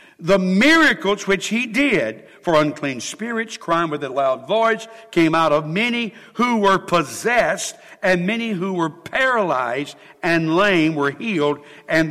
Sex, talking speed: male, 150 wpm